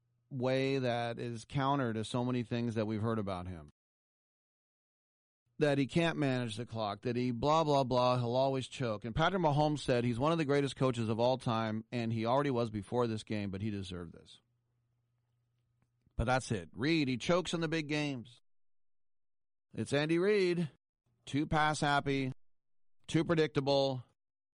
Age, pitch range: 30-49, 115-135 Hz